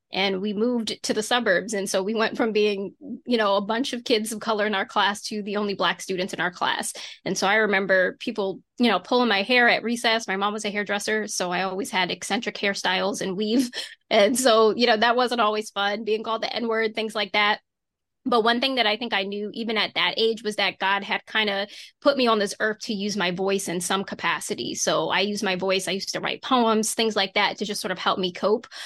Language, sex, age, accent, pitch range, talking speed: English, female, 20-39, American, 195-225 Hz, 250 wpm